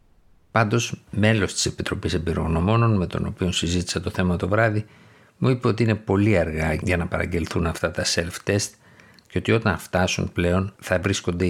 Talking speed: 165 wpm